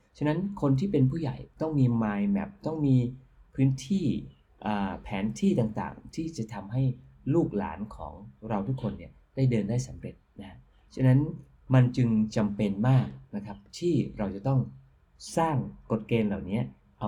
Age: 20-39